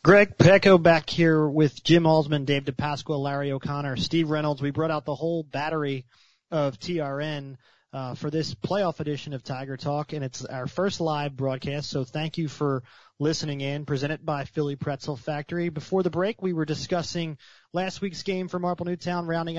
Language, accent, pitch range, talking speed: English, American, 140-165 Hz, 180 wpm